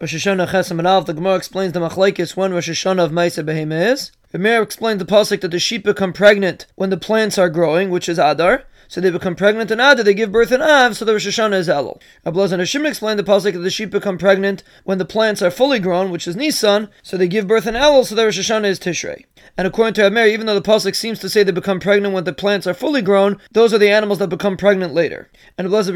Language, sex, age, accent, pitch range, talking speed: English, male, 20-39, American, 190-220 Hz, 255 wpm